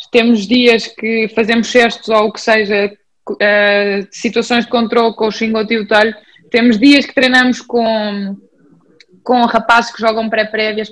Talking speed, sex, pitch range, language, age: 150 wpm, female, 225-265 Hz, English, 20-39